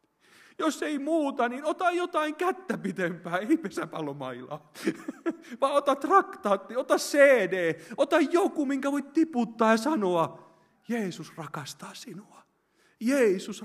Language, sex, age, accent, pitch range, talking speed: Finnish, male, 30-49, native, 160-230 Hz, 110 wpm